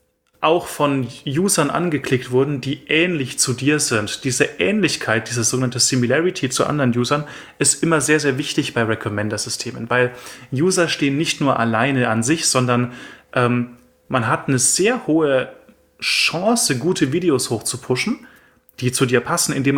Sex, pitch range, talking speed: male, 115-140 Hz, 150 wpm